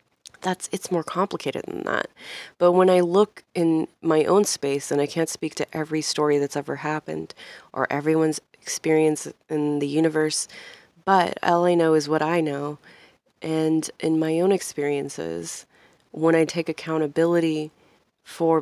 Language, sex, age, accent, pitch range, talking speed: English, female, 20-39, American, 150-165 Hz, 155 wpm